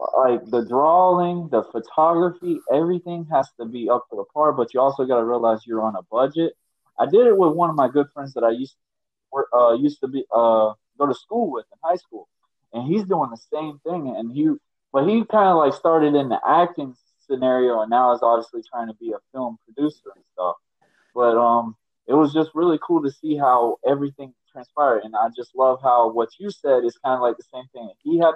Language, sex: English, male